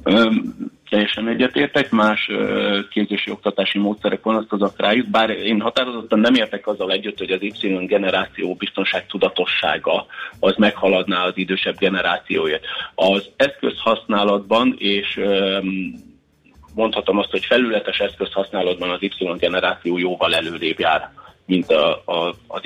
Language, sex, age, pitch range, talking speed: Hungarian, male, 30-49, 95-120 Hz, 130 wpm